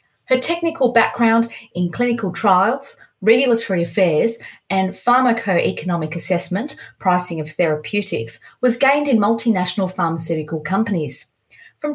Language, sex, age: English, female, 30-49